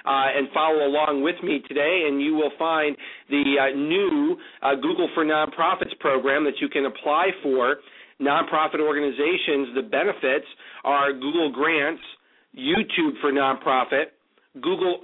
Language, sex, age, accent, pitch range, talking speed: English, male, 40-59, American, 135-155 Hz, 140 wpm